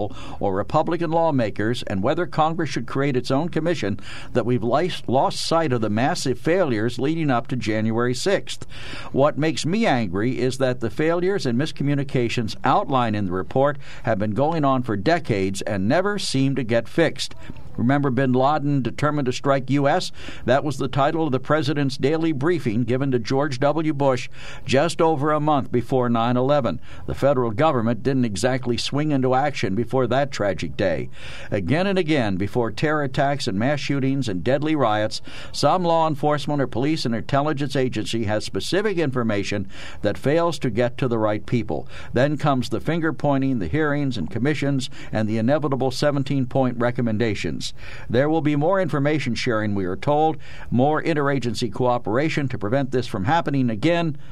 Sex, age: male, 60-79